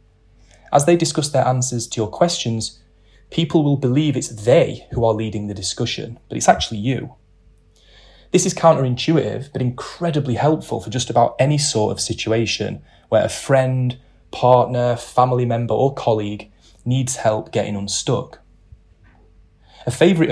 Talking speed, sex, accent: 145 wpm, male, British